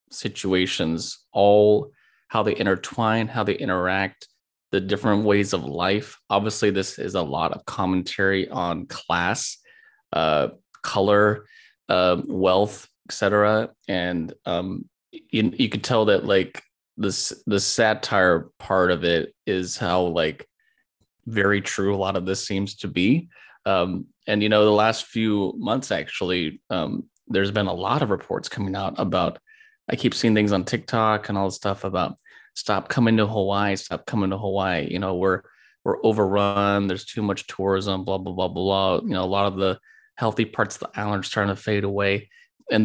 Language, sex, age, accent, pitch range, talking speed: English, male, 20-39, American, 95-105 Hz, 170 wpm